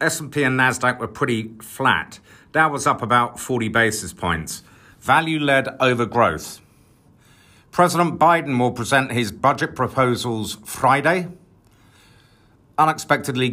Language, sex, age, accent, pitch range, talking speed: English, male, 50-69, British, 115-160 Hz, 125 wpm